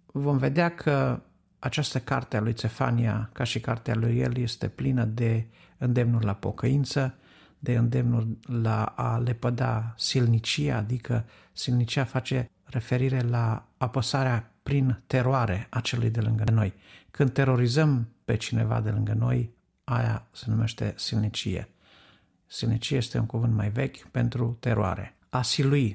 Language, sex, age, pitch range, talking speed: Romanian, male, 50-69, 110-130 Hz, 135 wpm